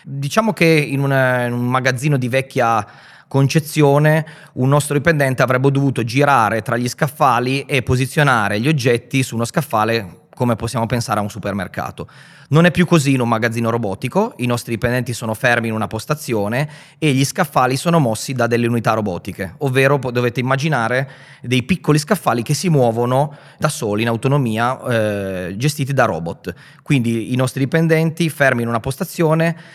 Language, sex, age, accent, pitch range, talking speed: Italian, male, 30-49, native, 115-150 Hz, 165 wpm